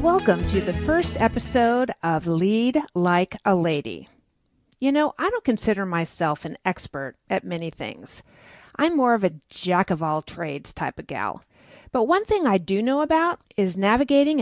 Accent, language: American, English